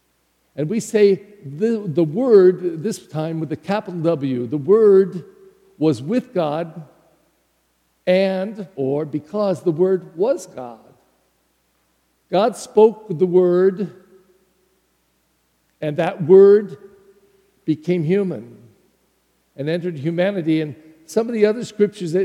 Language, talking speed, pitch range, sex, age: English, 115 wpm, 150-200 Hz, male, 50-69